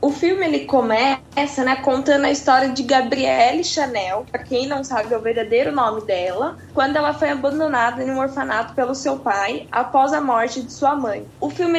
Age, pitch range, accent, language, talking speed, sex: 10-29, 230-295 Hz, Brazilian, Portuguese, 190 wpm, female